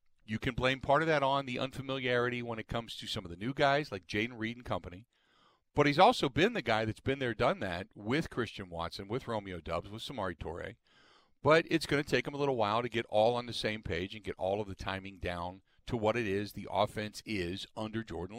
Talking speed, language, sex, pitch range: 245 wpm, English, male, 110-140 Hz